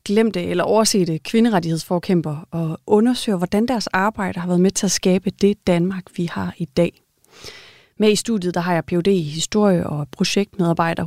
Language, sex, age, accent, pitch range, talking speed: Danish, female, 30-49, native, 175-215 Hz, 175 wpm